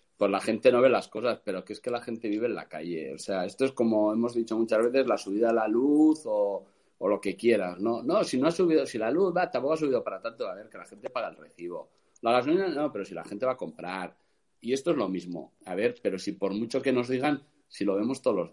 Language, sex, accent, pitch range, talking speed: Spanish, male, Spanish, 100-155 Hz, 285 wpm